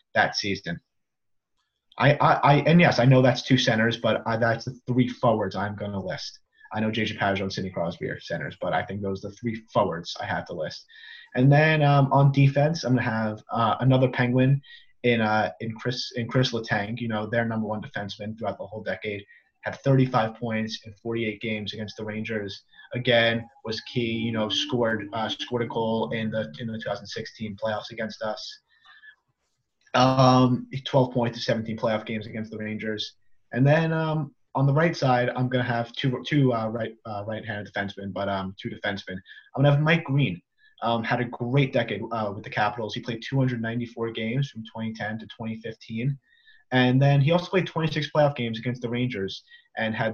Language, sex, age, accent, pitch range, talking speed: English, male, 30-49, American, 110-130 Hz, 195 wpm